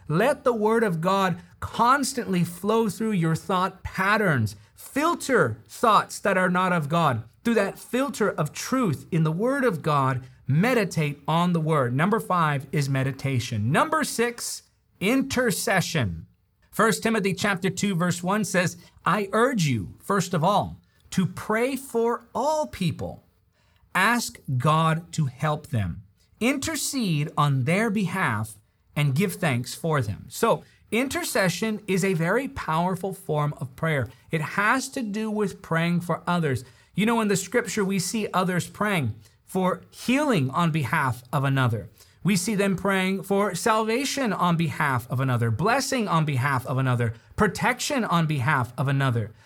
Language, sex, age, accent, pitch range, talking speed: English, male, 40-59, American, 140-215 Hz, 150 wpm